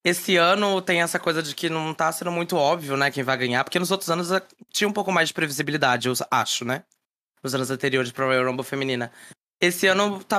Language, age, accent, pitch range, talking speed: Portuguese, 20-39, Brazilian, 130-170 Hz, 225 wpm